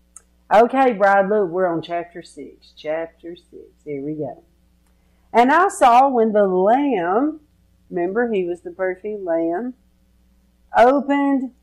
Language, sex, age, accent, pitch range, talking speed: English, female, 50-69, American, 165-235 Hz, 130 wpm